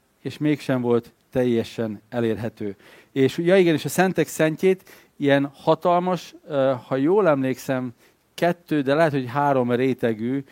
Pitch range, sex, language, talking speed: 115-155 Hz, male, Hungarian, 130 wpm